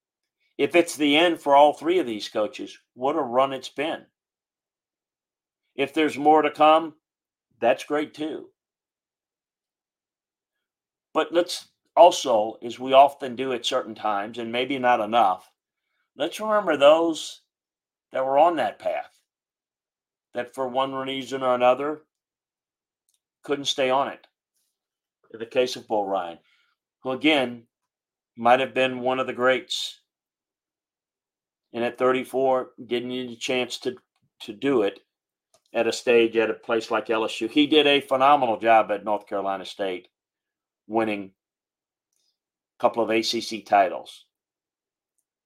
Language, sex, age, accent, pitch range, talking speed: English, male, 40-59, American, 115-145 Hz, 135 wpm